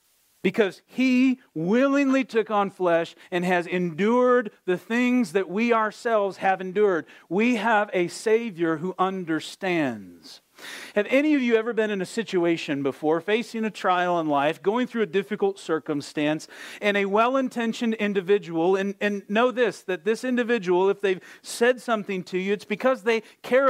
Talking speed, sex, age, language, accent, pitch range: 160 wpm, male, 40-59, English, American, 185-240 Hz